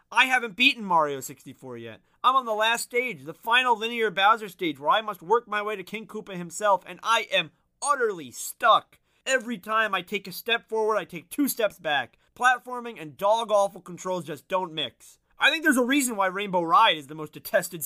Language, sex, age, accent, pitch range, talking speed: English, male, 30-49, American, 180-250 Hz, 210 wpm